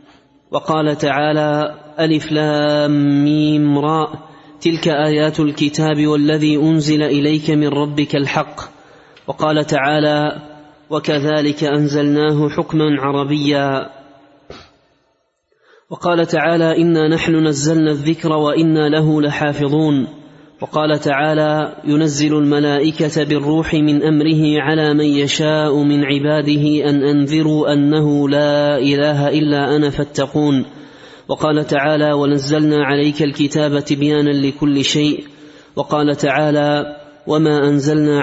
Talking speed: 95 wpm